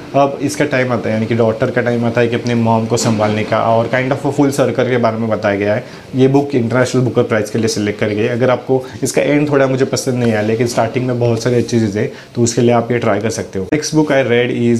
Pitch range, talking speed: 115-130 Hz, 220 wpm